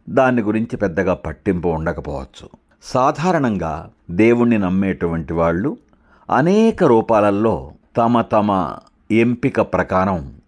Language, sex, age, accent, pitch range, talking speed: Telugu, male, 60-79, native, 90-110 Hz, 85 wpm